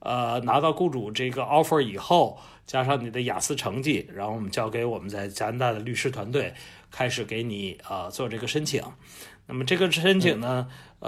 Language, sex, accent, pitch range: Chinese, male, native, 125-185 Hz